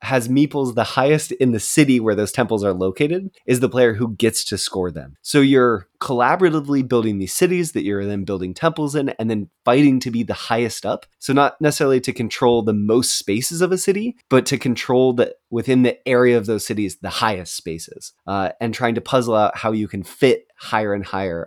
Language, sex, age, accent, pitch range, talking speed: English, male, 20-39, American, 105-140 Hz, 215 wpm